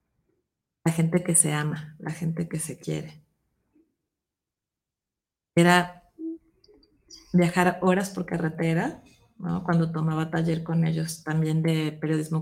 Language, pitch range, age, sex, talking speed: Spanish, 165-200 Hz, 30-49, female, 115 wpm